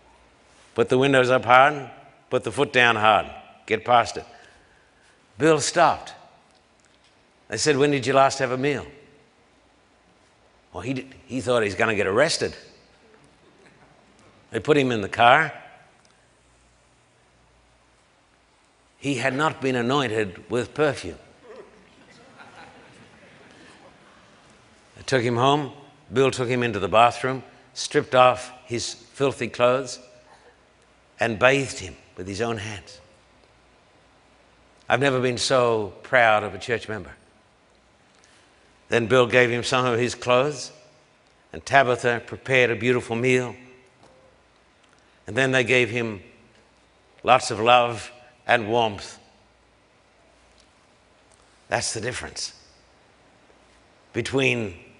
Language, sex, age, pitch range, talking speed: English, male, 60-79, 115-130 Hz, 115 wpm